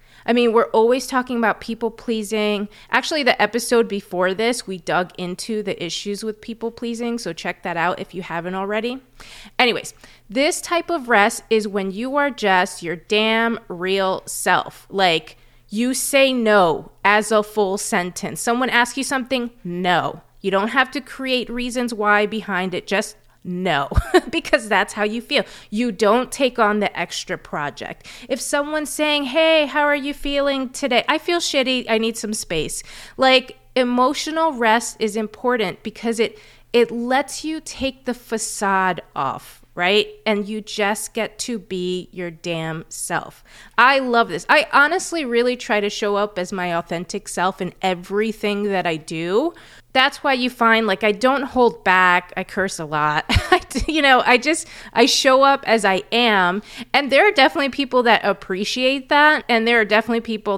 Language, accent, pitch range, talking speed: English, American, 190-255 Hz, 170 wpm